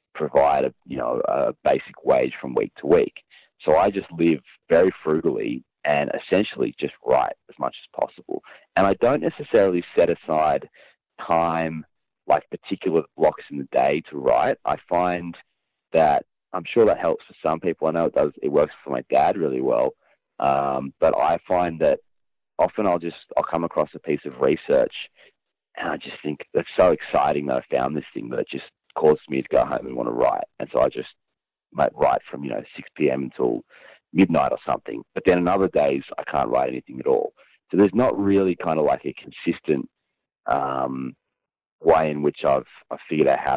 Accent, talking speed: Australian, 200 wpm